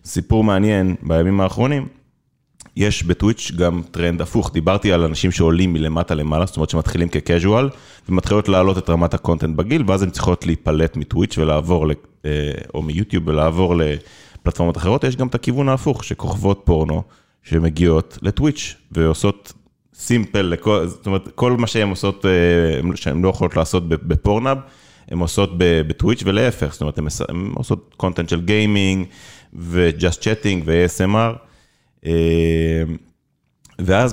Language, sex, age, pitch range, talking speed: Hebrew, male, 30-49, 85-105 Hz, 110 wpm